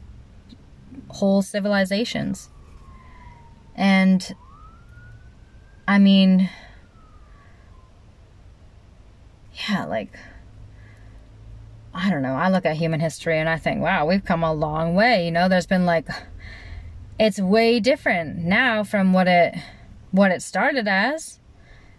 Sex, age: female, 20-39